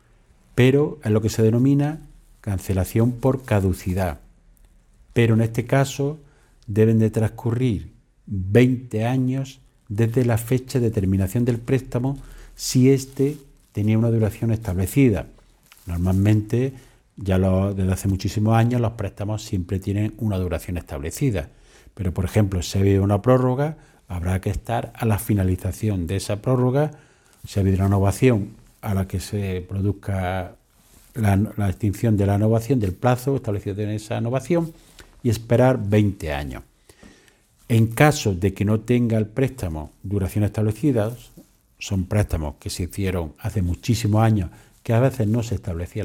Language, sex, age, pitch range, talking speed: Spanish, male, 50-69, 100-125 Hz, 145 wpm